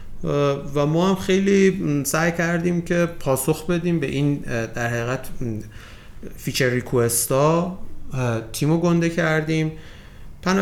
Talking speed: 115 wpm